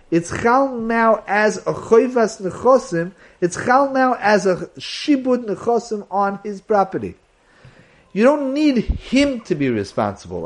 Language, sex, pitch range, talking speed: English, male, 170-250 Hz, 140 wpm